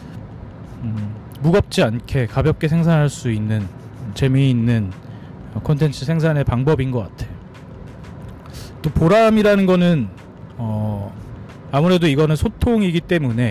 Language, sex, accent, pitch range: Korean, male, native, 115-160 Hz